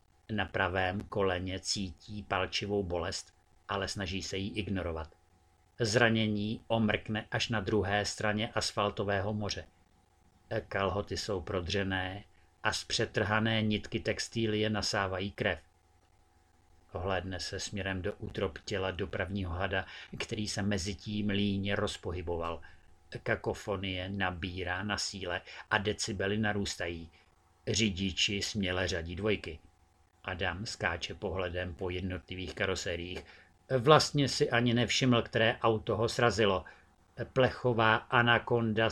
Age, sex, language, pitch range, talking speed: 50-69, male, Czech, 90-110 Hz, 105 wpm